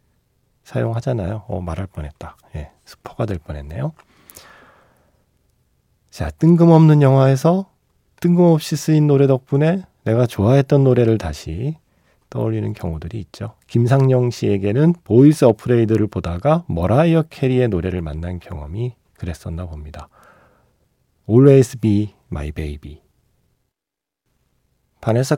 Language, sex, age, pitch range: Korean, male, 40-59, 90-140 Hz